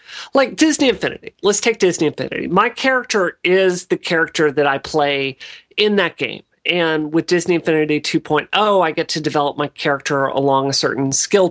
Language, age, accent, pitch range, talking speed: English, 40-59, American, 140-175 Hz, 170 wpm